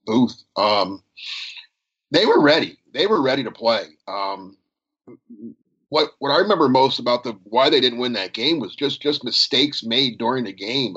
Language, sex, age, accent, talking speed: English, male, 50-69, American, 175 wpm